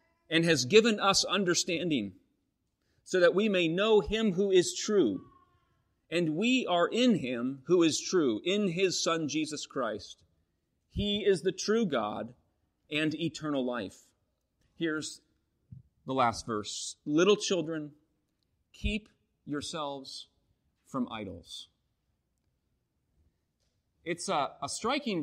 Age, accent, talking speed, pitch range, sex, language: 40-59, American, 115 wpm, 140-195 Hz, male, English